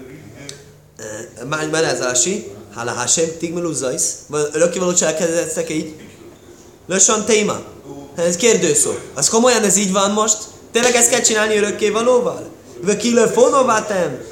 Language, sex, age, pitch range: Hungarian, male, 20-39, 145-220 Hz